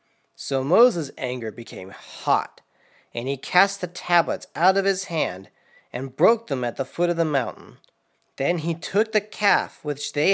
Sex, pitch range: male, 145-190 Hz